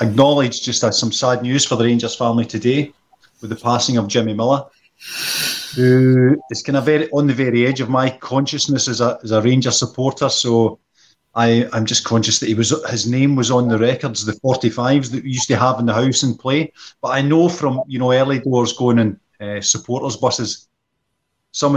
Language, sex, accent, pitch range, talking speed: English, male, British, 110-130 Hz, 210 wpm